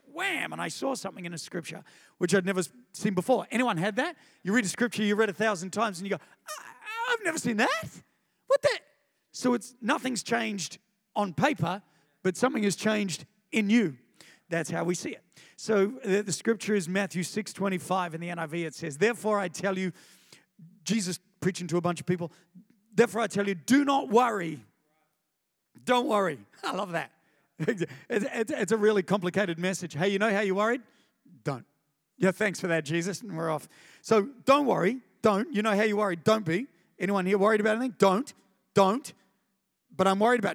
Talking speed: 190 wpm